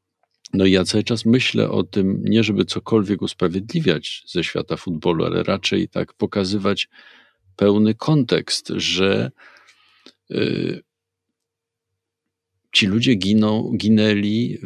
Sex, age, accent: male, 50-69, native